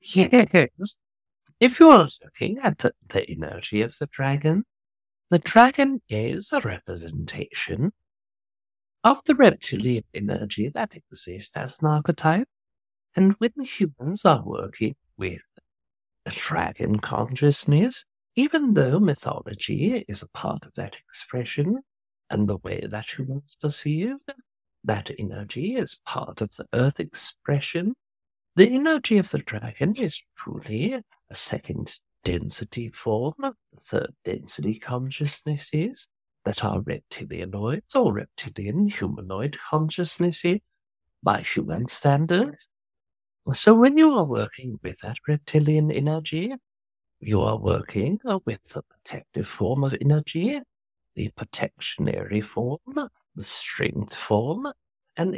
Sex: male